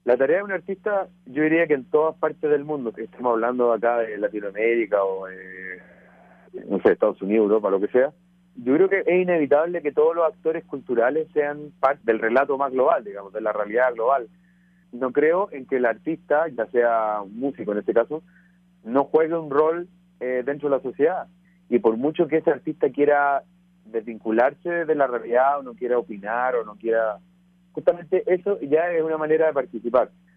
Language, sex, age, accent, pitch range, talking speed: English, male, 30-49, Argentinian, 115-165 Hz, 190 wpm